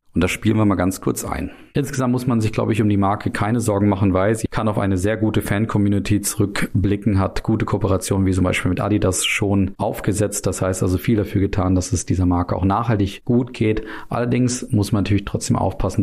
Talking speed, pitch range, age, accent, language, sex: 220 wpm, 90-105 Hz, 40-59, German, German, male